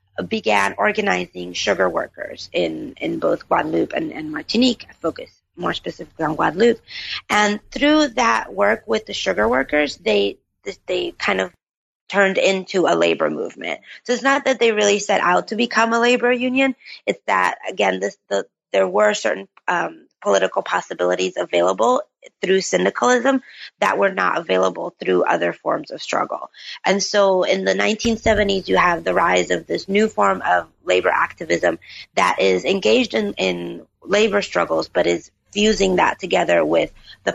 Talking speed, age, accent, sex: 160 wpm, 30-49, American, female